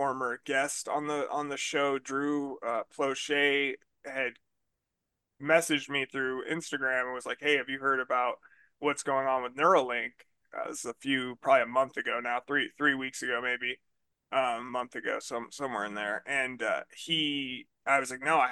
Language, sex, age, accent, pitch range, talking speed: English, male, 20-39, American, 125-145 Hz, 190 wpm